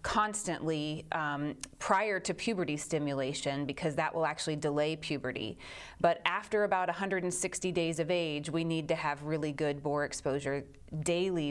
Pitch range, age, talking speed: 145-180 Hz, 30-49, 145 wpm